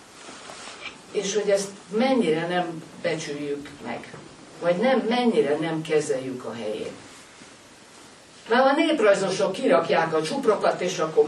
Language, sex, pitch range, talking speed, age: Hungarian, female, 155-210 Hz, 115 wpm, 60-79